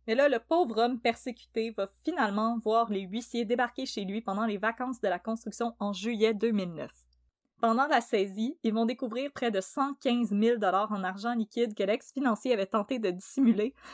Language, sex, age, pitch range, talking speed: French, female, 20-39, 205-250 Hz, 180 wpm